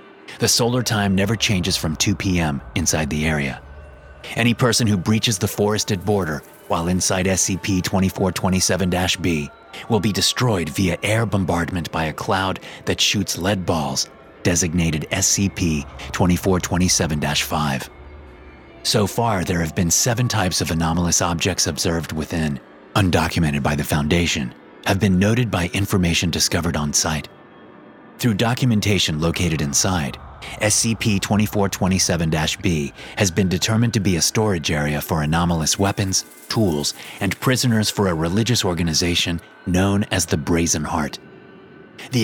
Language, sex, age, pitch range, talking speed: English, male, 30-49, 80-105 Hz, 125 wpm